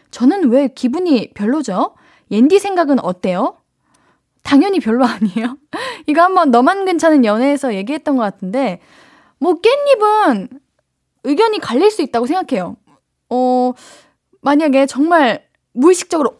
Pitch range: 220-310 Hz